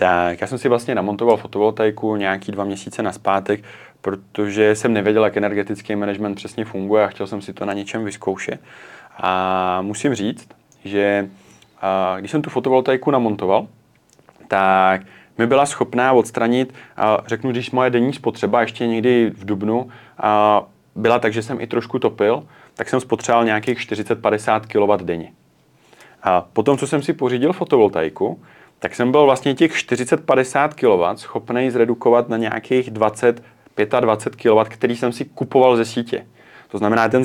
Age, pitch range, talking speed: 30-49, 105-125 Hz, 155 wpm